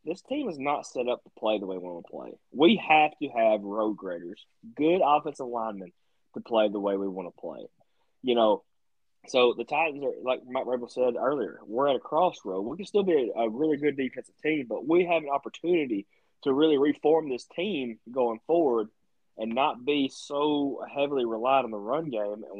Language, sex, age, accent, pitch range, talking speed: English, male, 20-39, American, 110-150 Hz, 210 wpm